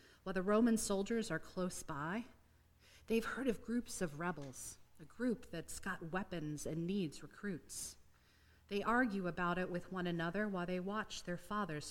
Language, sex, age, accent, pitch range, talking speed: English, female, 40-59, American, 145-230 Hz, 165 wpm